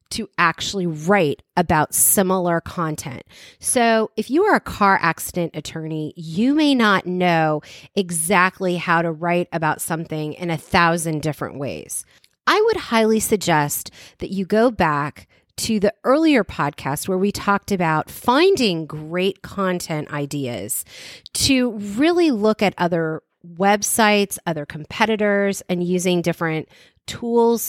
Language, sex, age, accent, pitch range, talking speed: English, female, 30-49, American, 165-220 Hz, 130 wpm